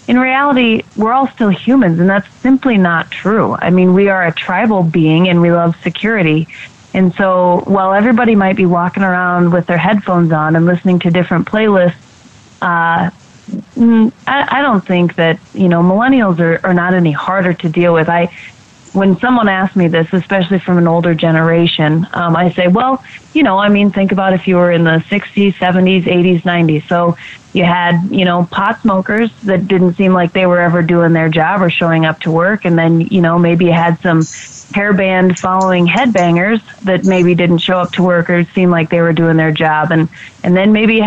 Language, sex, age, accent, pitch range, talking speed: English, female, 30-49, American, 170-200 Hz, 205 wpm